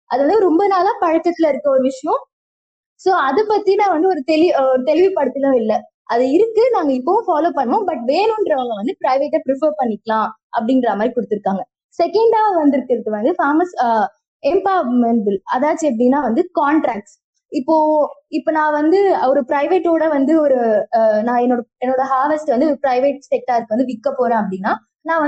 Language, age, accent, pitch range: Tamil, 20-39, native, 255-345 Hz